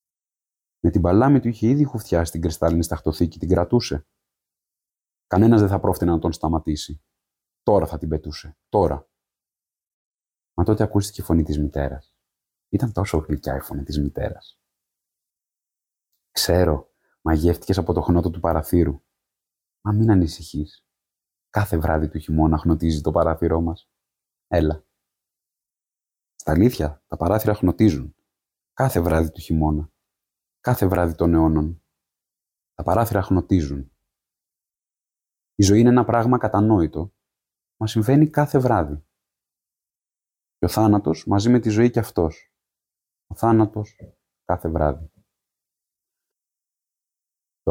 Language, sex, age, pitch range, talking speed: Greek, male, 30-49, 80-100 Hz, 125 wpm